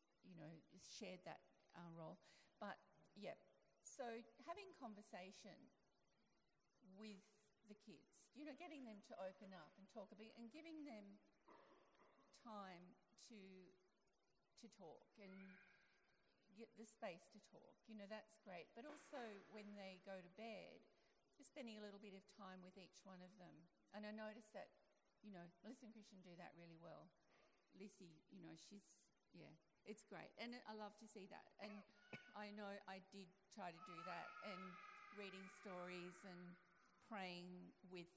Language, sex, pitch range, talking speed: English, female, 180-220 Hz, 160 wpm